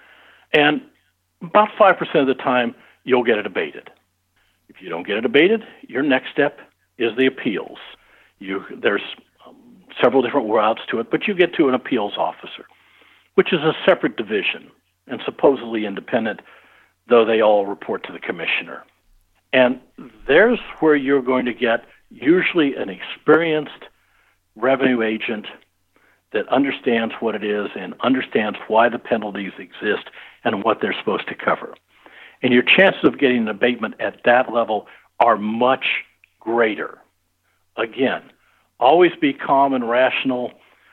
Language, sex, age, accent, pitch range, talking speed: English, male, 60-79, American, 110-145 Hz, 145 wpm